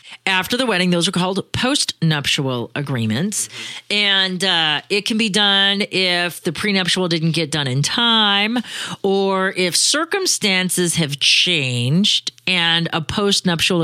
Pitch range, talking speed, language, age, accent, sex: 150-195 Hz, 130 wpm, English, 40-59, American, female